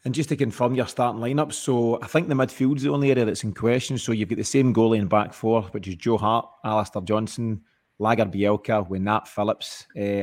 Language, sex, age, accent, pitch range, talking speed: English, male, 30-49, British, 105-125 Hz, 230 wpm